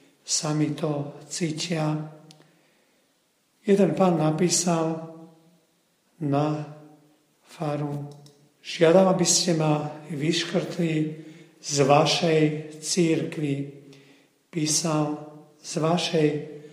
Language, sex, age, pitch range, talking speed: Slovak, male, 50-69, 145-170 Hz, 70 wpm